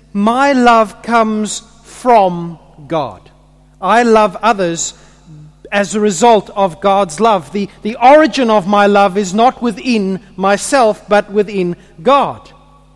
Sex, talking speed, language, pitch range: male, 125 wpm, English, 145-210 Hz